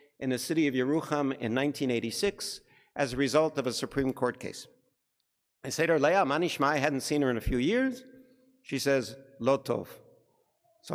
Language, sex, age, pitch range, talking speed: English, male, 50-69, 140-195 Hz, 175 wpm